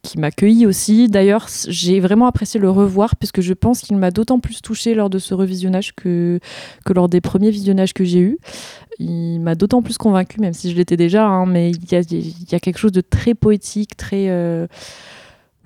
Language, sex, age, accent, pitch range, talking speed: French, female, 20-39, French, 170-205 Hz, 205 wpm